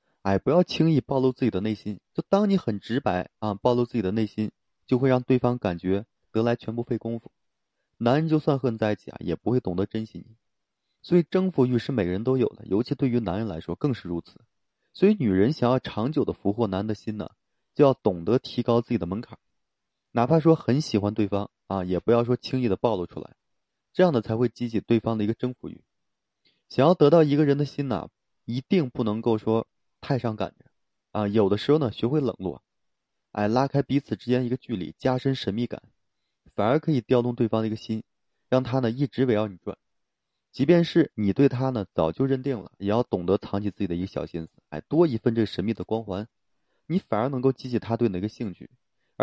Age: 20-39